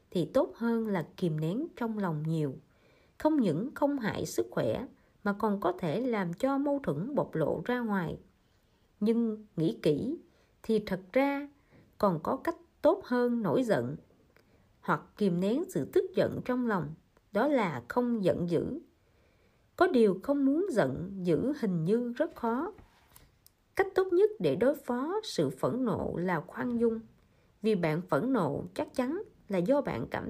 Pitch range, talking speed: 190-275 Hz, 170 wpm